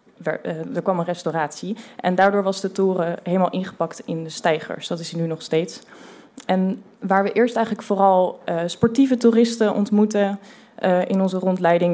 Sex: female